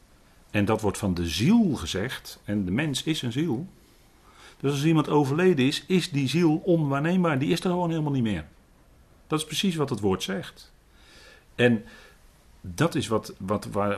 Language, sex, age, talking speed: Dutch, male, 40-59, 180 wpm